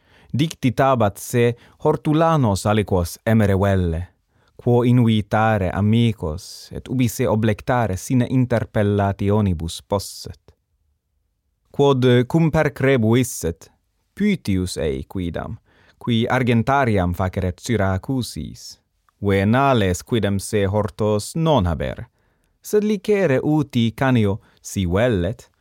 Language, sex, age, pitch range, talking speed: English, male, 30-49, 90-120 Hz, 90 wpm